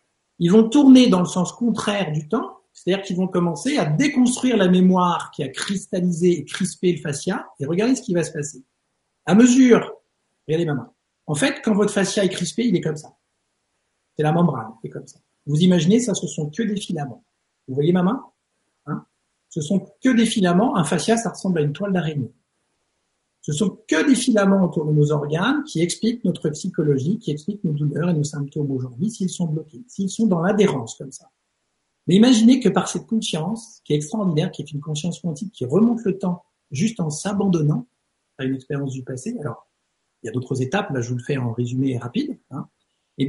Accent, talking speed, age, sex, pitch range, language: French, 210 wpm, 50-69, male, 150-210 Hz, French